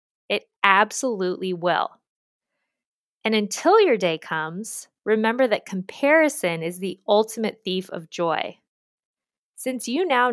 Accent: American